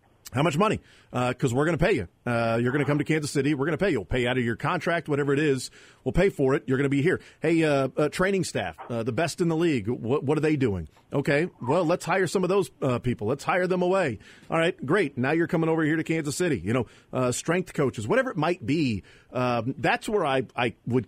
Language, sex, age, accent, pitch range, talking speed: English, male, 40-59, American, 120-155 Hz, 275 wpm